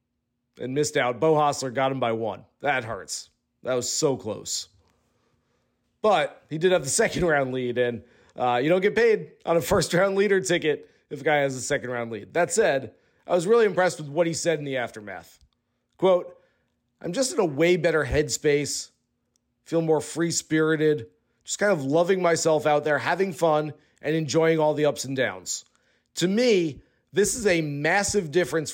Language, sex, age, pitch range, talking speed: English, male, 40-59, 150-185 Hz, 190 wpm